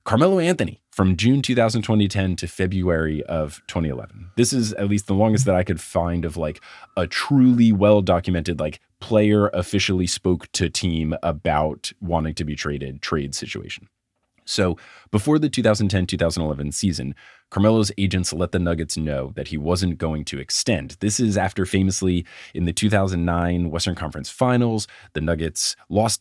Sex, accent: male, American